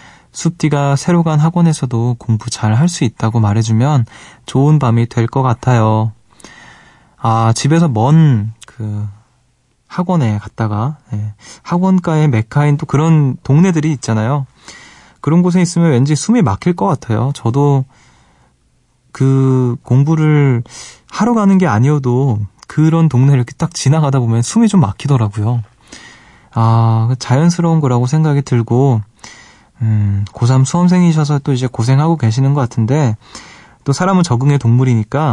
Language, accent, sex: Korean, native, male